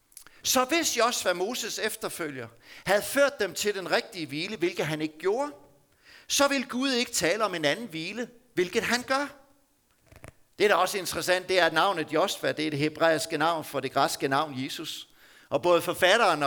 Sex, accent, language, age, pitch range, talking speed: male, native, Danish, 60-79, 155-245 Hz, 185 wpm